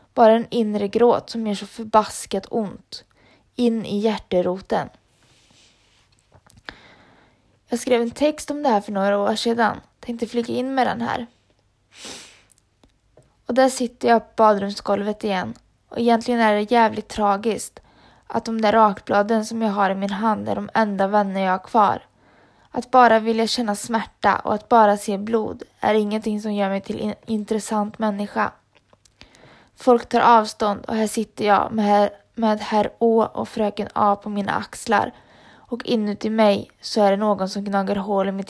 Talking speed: 170 wpm